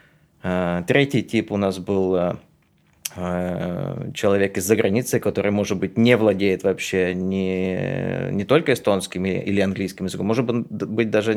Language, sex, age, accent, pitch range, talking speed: Russian, male, 20-39, native, 95-110 Hz, 125 wpm